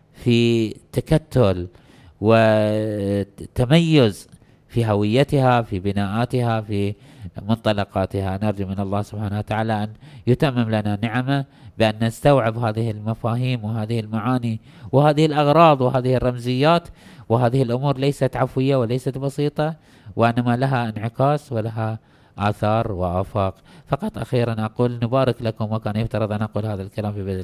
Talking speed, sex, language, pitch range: 115 wpm, male, Arabic, 105-130 Hz